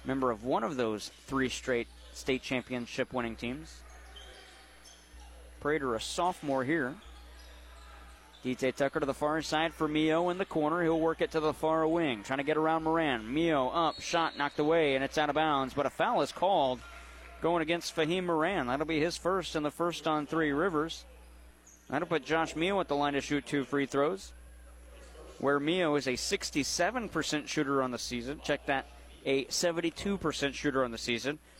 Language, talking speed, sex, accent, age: English, 180 wpm, male, American, 30-49